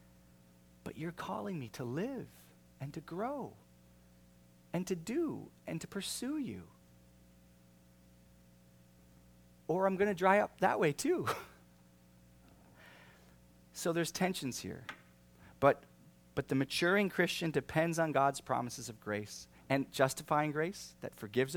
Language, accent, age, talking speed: English, American, 40-59, 125 wpm